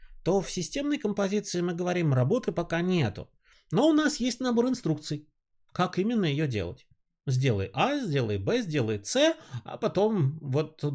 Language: Russian